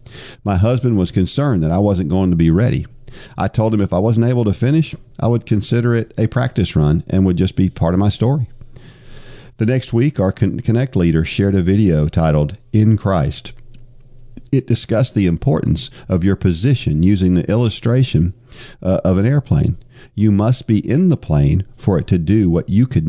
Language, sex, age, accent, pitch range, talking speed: English, male, 50-69, American, 95-125 Hz, 190 wpm